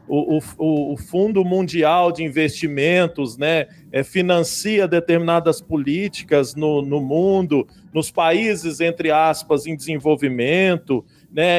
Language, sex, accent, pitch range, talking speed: Portuguese, male, Brazilian, 150-185 Hz, 115 wpm